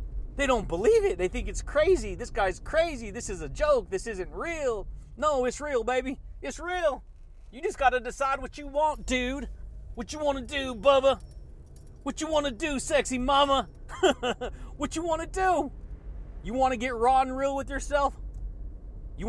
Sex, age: male, 30-49